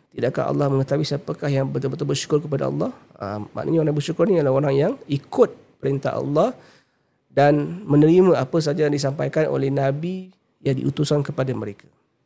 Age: 50-69